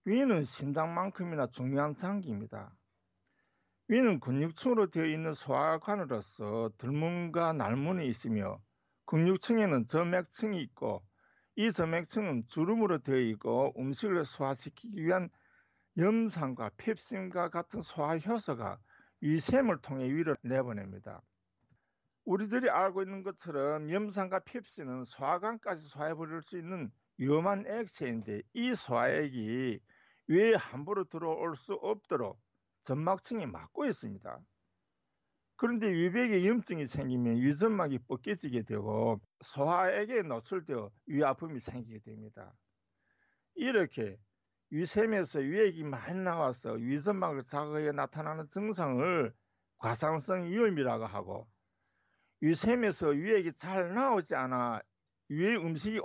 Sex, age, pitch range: male, 50-69, 125-190 Hz